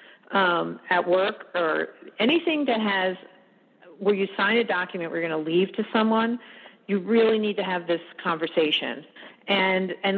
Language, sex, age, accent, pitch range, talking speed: English, female, 40-59, American, 175-205 Hz, 160 wpm